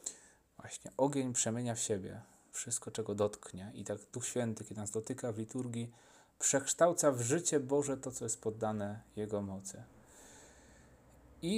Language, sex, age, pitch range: Polish, male, 30-49, 115-140 Hz